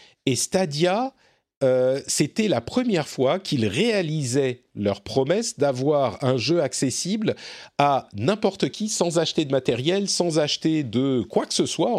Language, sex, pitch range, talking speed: French, male, 120-175 Hz, 145 wpm